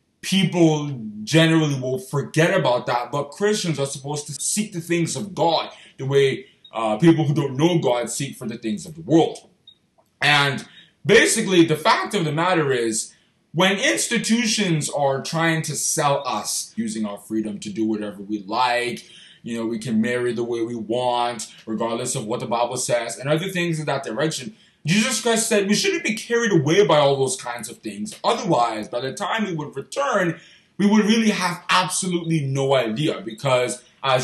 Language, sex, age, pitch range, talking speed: English, male, 20-39, 120-165 Hz, 185 wpm